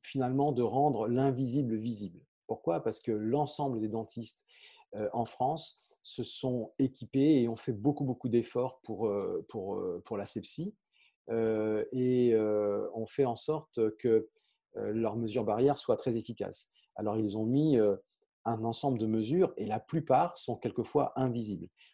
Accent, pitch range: French, 105-135 Hz